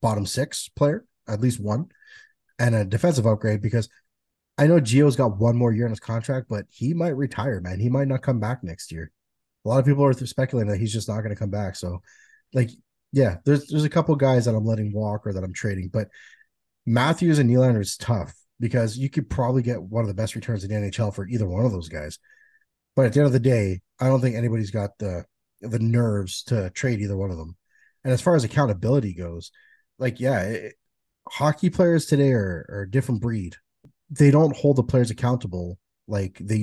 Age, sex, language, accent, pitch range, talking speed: 30-49, male, English, American, 105-135 Hz, 220 wpm